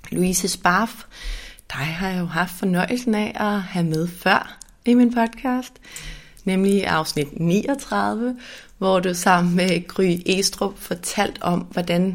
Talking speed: 140 wpm